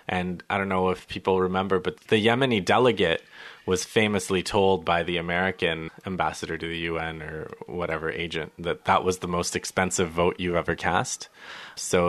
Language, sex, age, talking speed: English, male, 30-49, 175 wpm